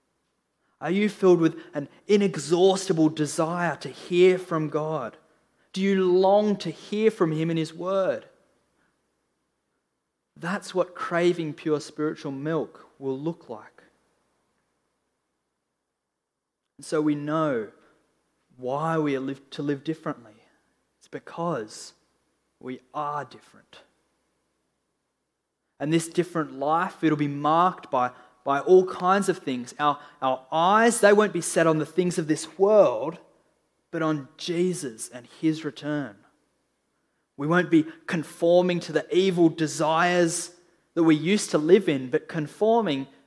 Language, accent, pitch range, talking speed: English, Australian, 150-180 Hz, 130 wpm